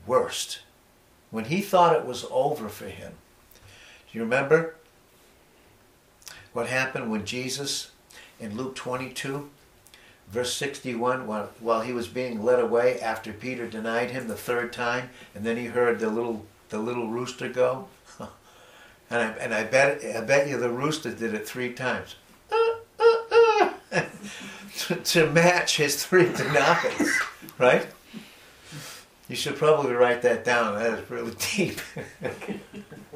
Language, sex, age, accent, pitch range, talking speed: English, male, 60-79, American, 115-150 Hz, 145 wpm